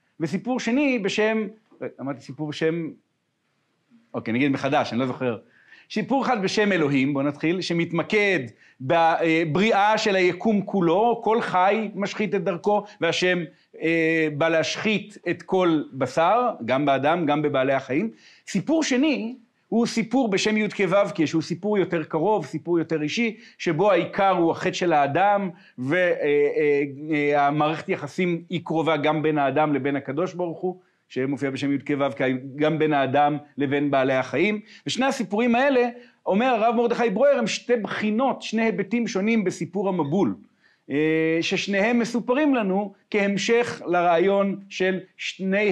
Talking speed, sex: 135 wpm, male